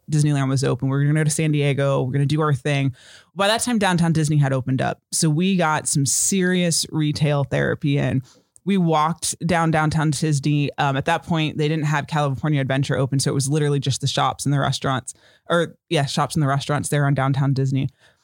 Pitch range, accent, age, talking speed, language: 140-165 Hz, American, 20-39, 220 wpm, English